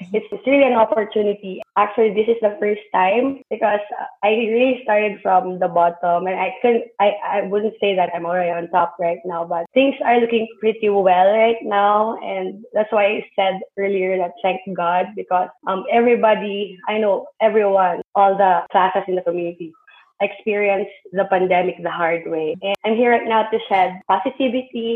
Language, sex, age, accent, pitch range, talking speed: English, female, 20-39, Filipino, 185-230 Hz, 180 wpm